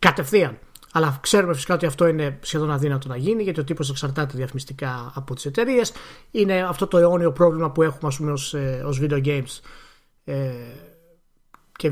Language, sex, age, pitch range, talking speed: Greek, male, 30-49, 145-205 Hz, 160 wpm